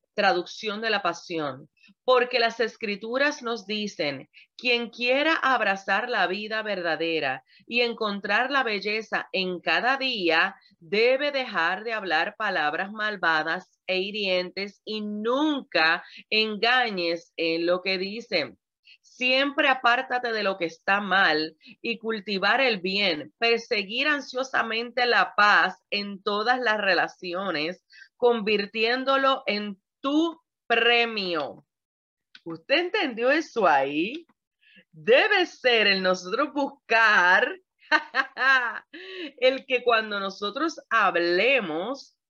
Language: Spanish